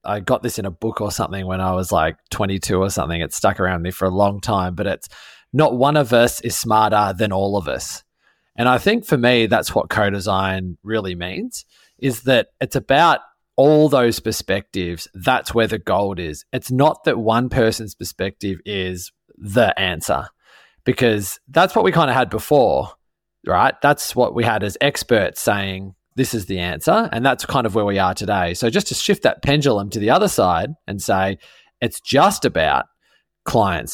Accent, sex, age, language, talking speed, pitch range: Australian, male, 20-39, English, 195 wpm, 95-120 Hz